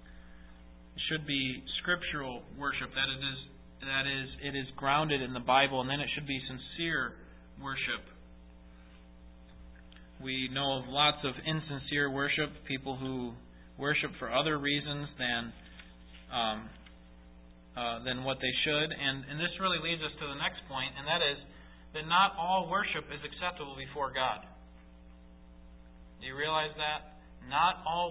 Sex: male